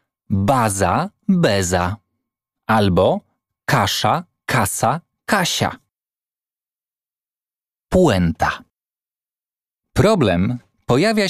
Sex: male